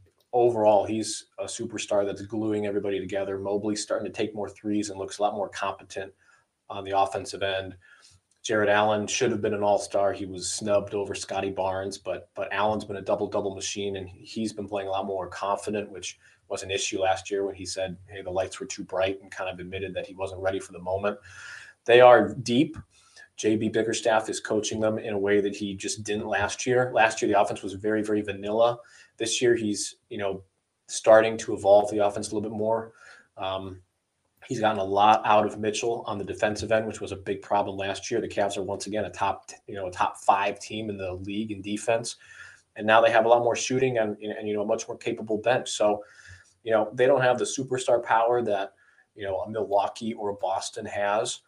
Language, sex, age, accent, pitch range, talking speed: English, male, 30-49, American, 95-110 Hz, 220 wpm